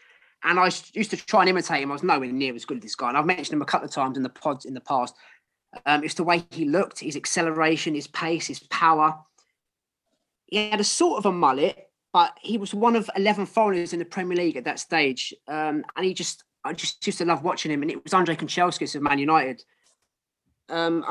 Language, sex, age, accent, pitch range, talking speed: English, male, 20-39, British, 150-195 Hz, 240 wpm